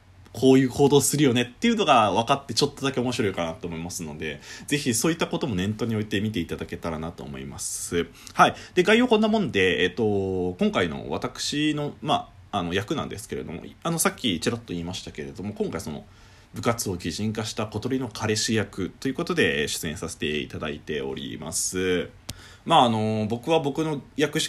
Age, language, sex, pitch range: 20-39, Japanese, male, 95-145 Hz